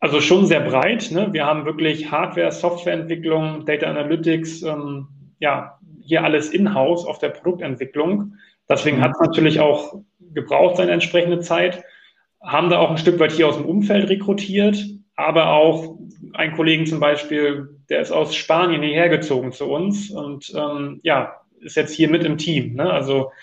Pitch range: 145-175 Hz